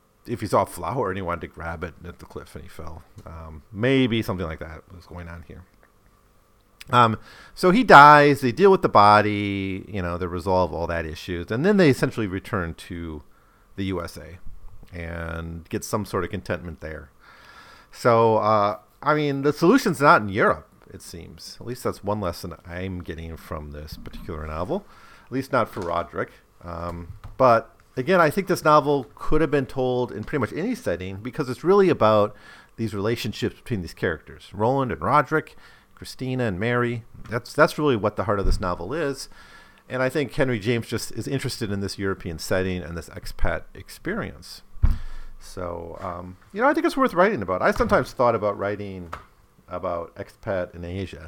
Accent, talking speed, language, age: American, 185 wpm, English, 40-59